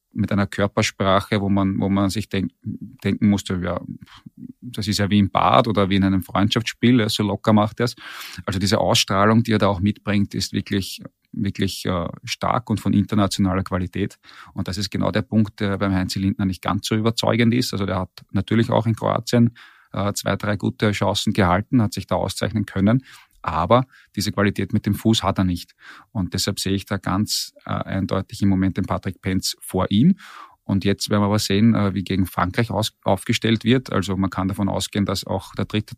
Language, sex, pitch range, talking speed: German, male, 95-110 Hz, 200 wpm